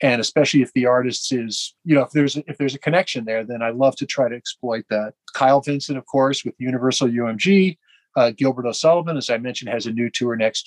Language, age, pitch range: English, 40-59, 130-160 Hz